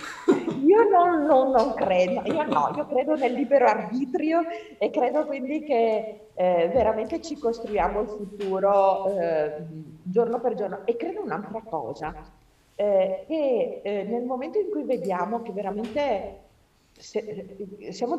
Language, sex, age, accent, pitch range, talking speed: Italian, female, 40-59, native, 170-250 Hz, 140 wpm